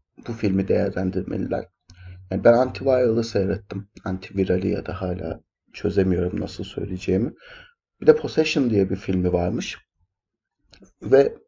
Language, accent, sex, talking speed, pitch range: Turkish, native, male, 115 wpm, 95-145 Hz